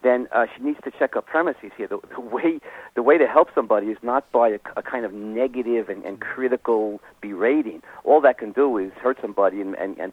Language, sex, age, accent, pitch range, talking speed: English, male, 50-69, American, 115-140 Hz, 230 wpm